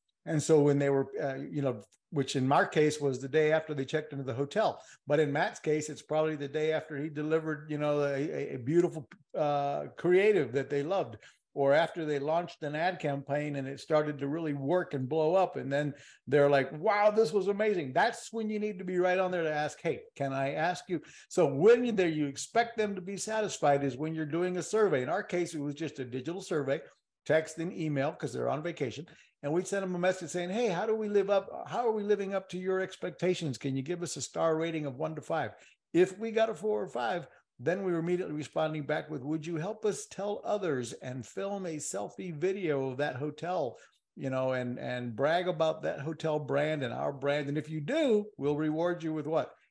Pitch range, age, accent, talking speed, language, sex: 145-180 Hz, 50-69, American, 235 wpm, English, male